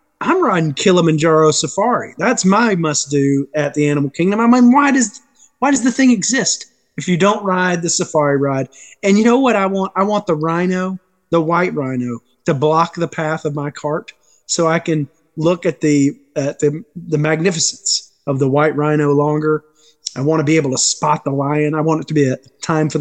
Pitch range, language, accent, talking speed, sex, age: 140-185 Hz, English, American, 210 wpm, male, 30-49